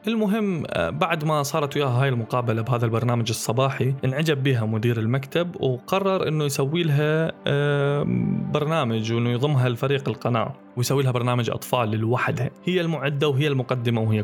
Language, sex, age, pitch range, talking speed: Arabic, male, 20-39, 115-145 Hz, 140 wpm